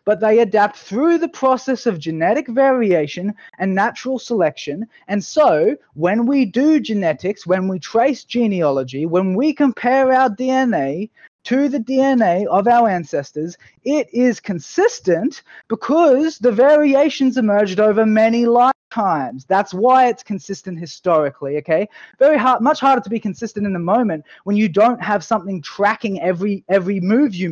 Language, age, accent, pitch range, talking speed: English, 20-39, Australian, 185-260 Hz, 150 wpm